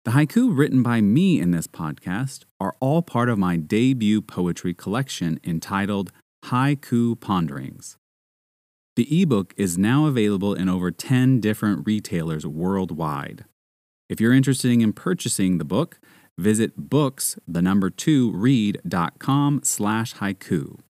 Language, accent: English, American